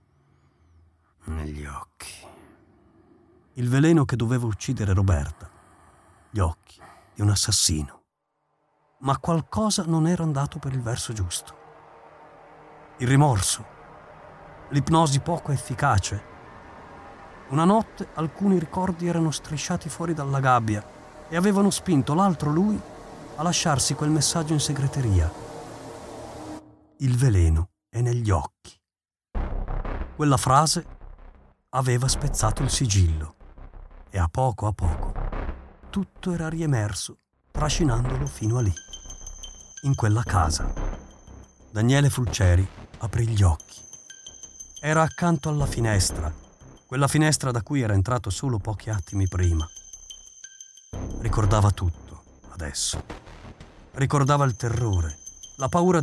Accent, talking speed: native, 105 wpm